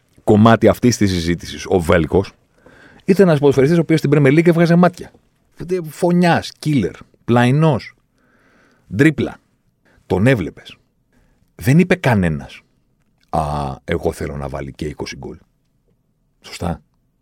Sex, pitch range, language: male, 100-160 Hz, Greek